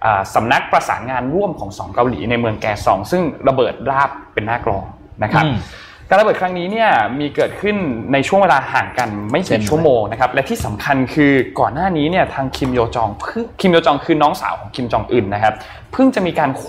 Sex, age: male, 20-39